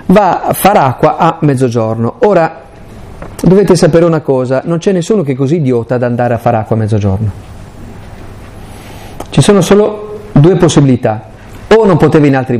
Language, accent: Italian, native